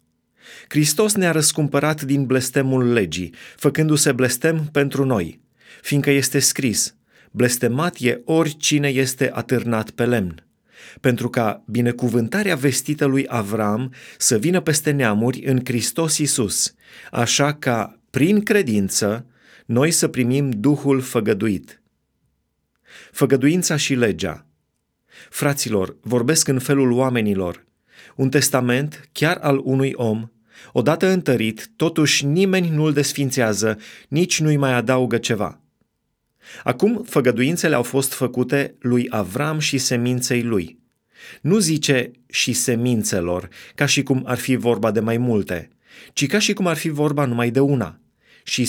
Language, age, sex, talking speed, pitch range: Romanian, 30-49, male, 125 wpm, 120-145 Hz